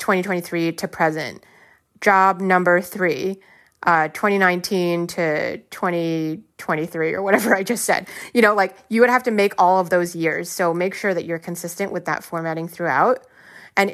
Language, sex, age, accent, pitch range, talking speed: English, female, 30-49, American, 170-200 Hz, 165 wpm